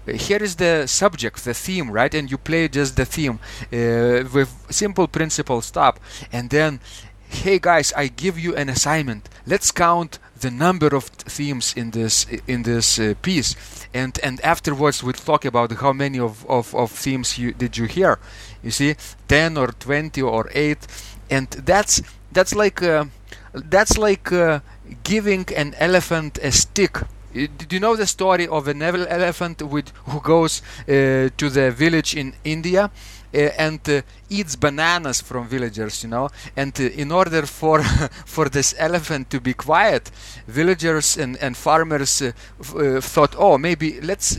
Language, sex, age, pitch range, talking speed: English, male, 30-49, 120-160 Hz, 170 wpm